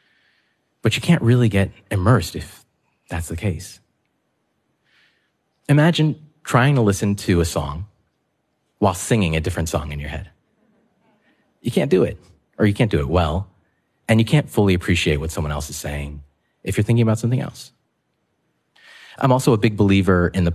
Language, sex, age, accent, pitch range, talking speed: English, male, 30-49, American, 85-115 Hz, 170 wpm